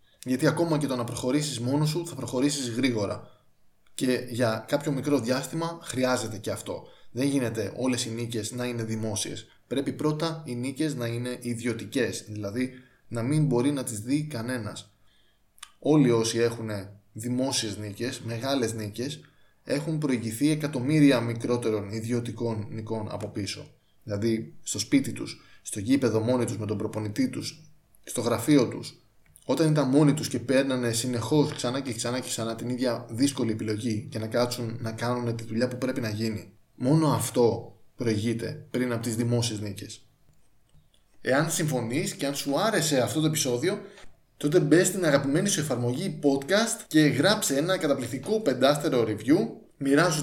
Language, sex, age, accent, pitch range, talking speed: Greek, male, 20-39, native, 115-150 Hz, 155 wpm